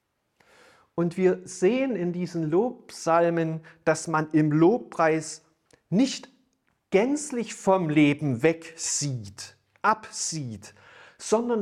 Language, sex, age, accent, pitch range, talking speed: German, male, 40-59, German, 130-195 Hz, 90 wpm